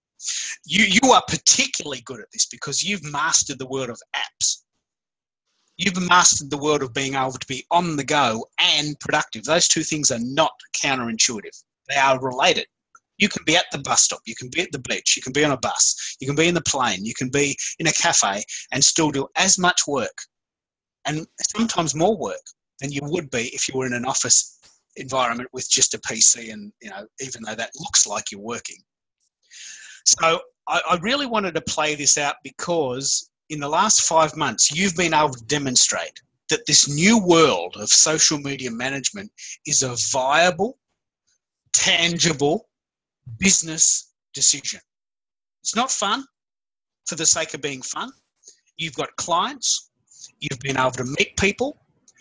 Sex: male